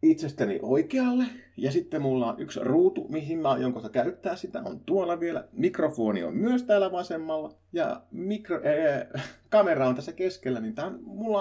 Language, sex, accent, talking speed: Finnish, male, native, 170 wpm